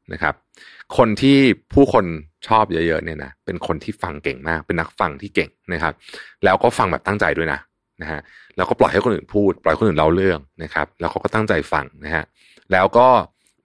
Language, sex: Thai, male